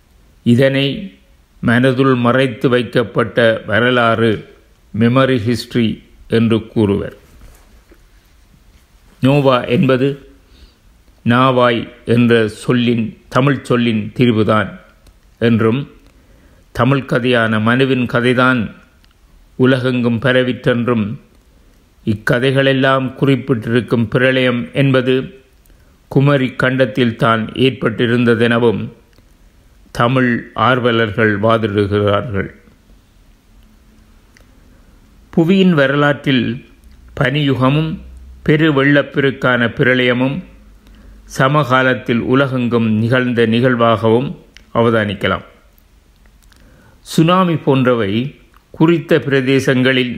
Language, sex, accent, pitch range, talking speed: Tamil, male, native, 110-130 Hz, 55 wpm